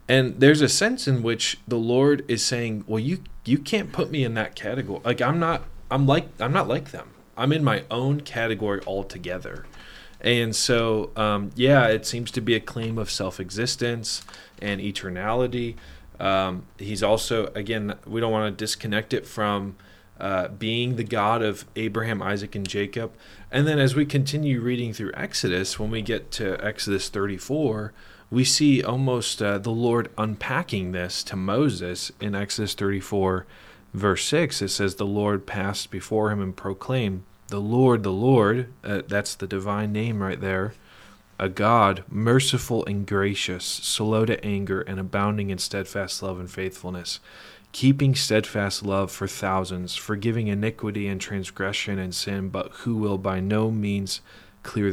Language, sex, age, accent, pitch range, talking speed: English, male, 20-39, American, 100-120 Hz, 165 wpm